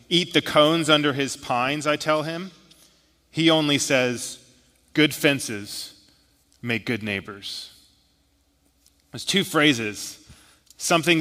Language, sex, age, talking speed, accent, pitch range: English, male, 30-49, 110 wpm, American, 115-155 Hz